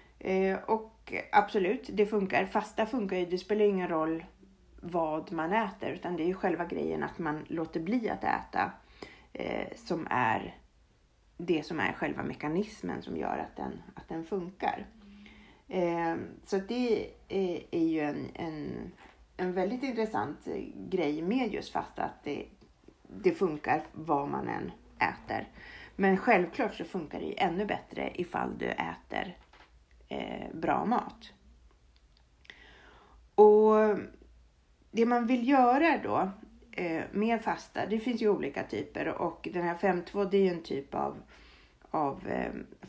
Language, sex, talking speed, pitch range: Swedish, female, 145 wpm, 150-210 Hz